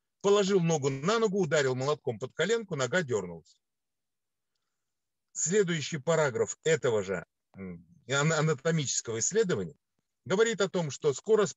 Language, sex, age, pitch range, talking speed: Russian, male, 50-69, 130-200 Hz, 110 wpm